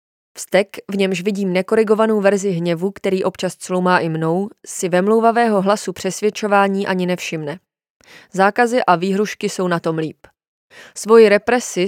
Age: 20-39